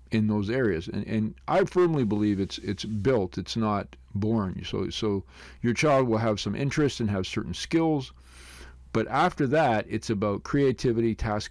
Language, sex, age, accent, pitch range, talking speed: English, male, 50-69, American, 95-125 Hz, 170 wpm